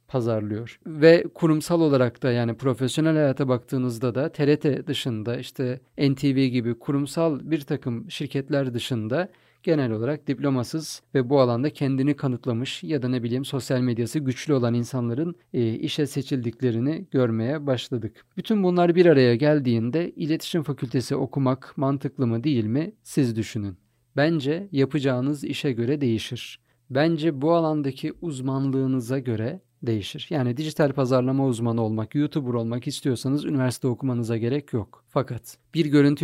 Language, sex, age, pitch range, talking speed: Turkish, male, 40-59, 125-150 Hz, 135 wpm